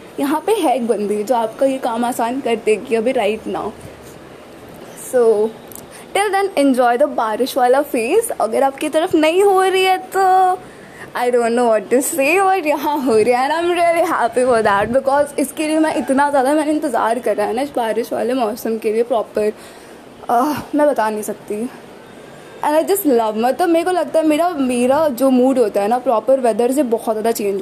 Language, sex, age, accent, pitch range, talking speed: Hindi, female, 20-39, native, 230-300 Hz, 190 wpm